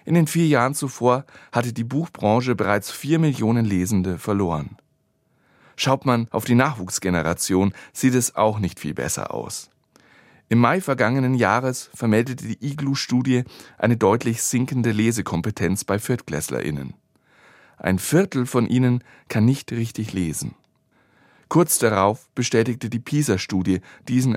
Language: German